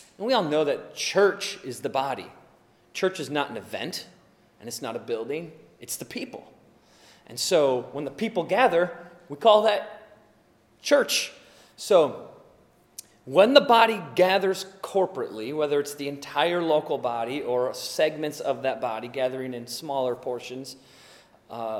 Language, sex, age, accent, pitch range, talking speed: English, male, 30-49, American, 125-185 Hz, 145 wpm